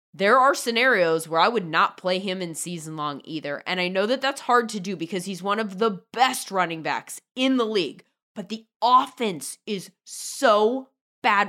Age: 20-39